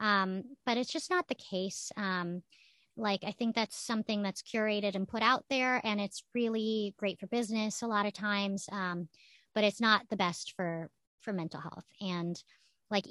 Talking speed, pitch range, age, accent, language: 190 wpm, 195-265 Hz, 30-49, American, English